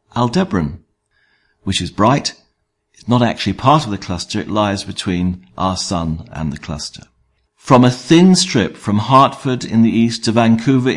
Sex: male